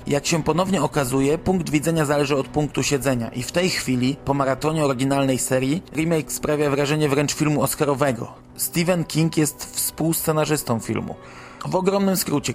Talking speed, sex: 155 wpm, male